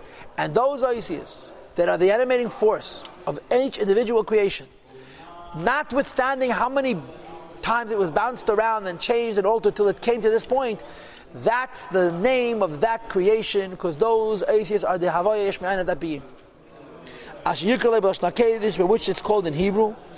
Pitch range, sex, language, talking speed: 180-235 Hz, male, English, 150 wpm